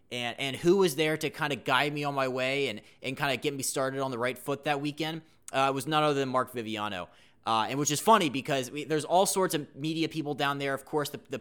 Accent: American